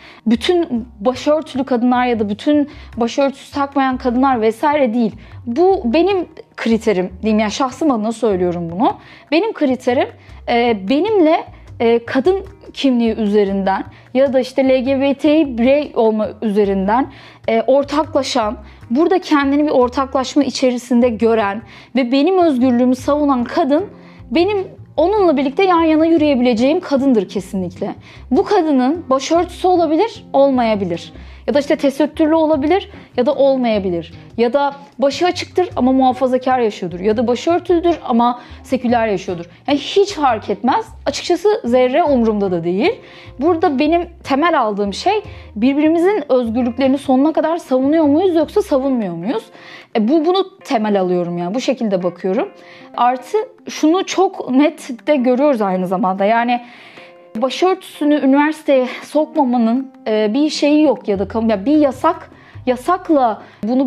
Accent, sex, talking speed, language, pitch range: native, female, 125 wpm, Turkish, 235-310 Hz